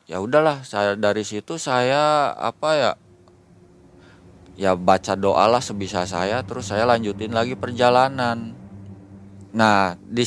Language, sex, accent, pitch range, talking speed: Indonesian, male, native, 105-155 Hz, 125 wpm